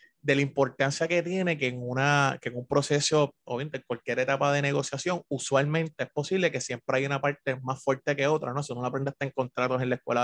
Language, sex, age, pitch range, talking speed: Spanish, male, 20-39, 130-155 Hz, 235 wpm